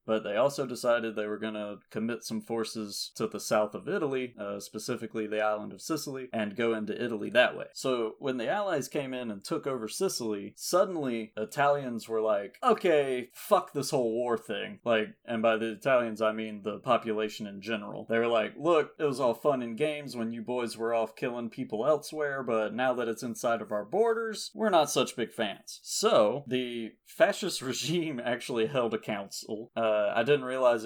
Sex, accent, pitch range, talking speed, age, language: male, American, 110-130 Hz, 195 wpm, 30-49, English